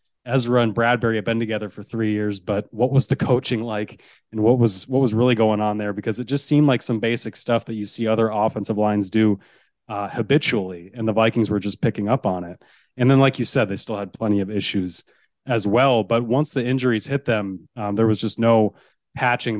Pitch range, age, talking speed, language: 110-130 Hz, 30-49, 230 wpm, English